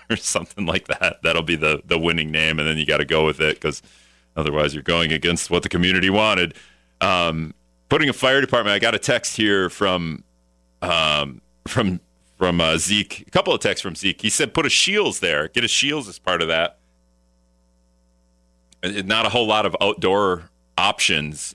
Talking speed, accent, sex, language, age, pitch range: 190 wpm, American, male, English, 30-49, 70-100 Hz